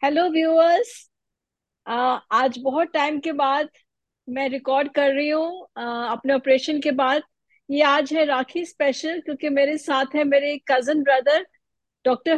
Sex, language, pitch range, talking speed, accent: female, Hindi, 260-305 Hz, 160 wpm, native